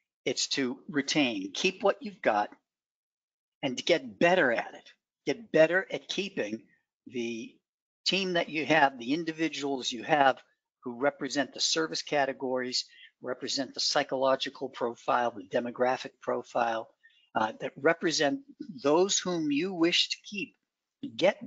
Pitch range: 130-200 Hz